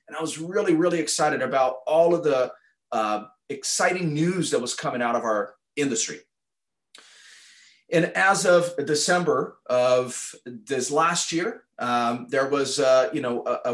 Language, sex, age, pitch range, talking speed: English, male, 30-49, 130-175 Hz, 155 wpm